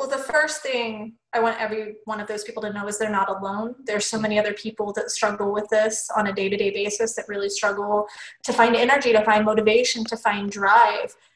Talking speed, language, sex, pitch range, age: 220 wpm, English, female, 220-270 Hz, 20-39